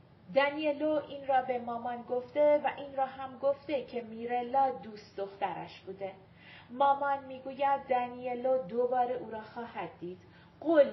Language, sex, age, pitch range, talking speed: Persian, female, 40-59, 215-265 Hz, 135 wpm